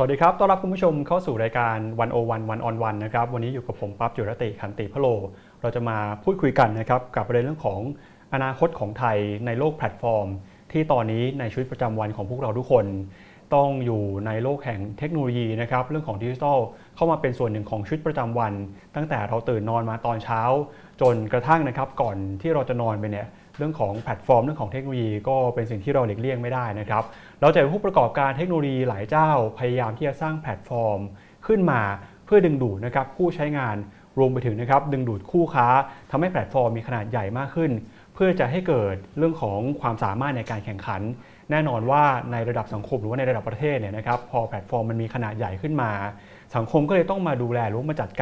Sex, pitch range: male, 110-140 Hz